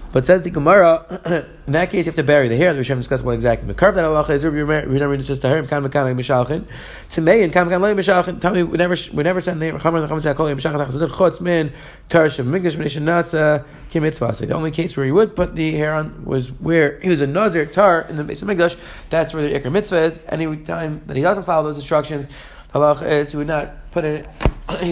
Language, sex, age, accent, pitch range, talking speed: English, male, 30-49, American, 135-160 Hz, 130 wpm